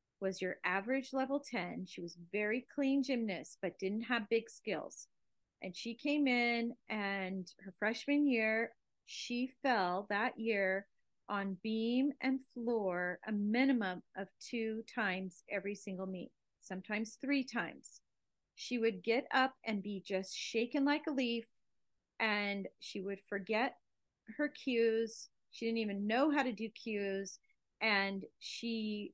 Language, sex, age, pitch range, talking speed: English, female, 40-59, 195-250 Hz, 140 wpm